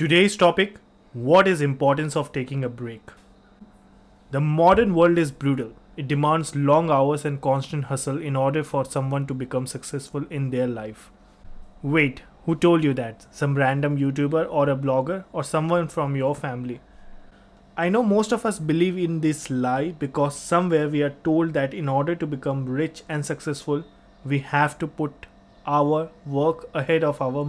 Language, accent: English, Indian